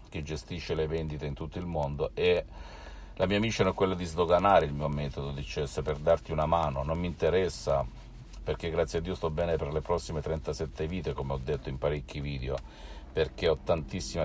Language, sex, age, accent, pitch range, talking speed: Italian, male, 50-69, native, 75-90 Hz, 200 wpm